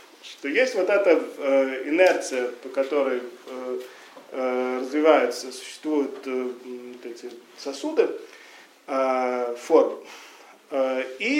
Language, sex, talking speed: Russian, male, 70 wpm